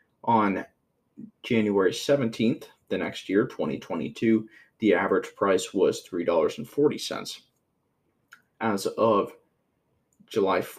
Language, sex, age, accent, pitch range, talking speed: English, male, 20-39, American, 105-120 Hz, 85 wpm